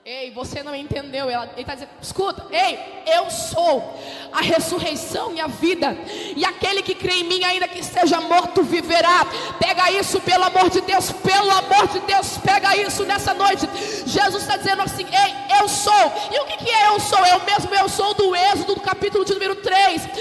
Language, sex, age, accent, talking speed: Portuguese, female, 20-39, Brazilian, 200 wpm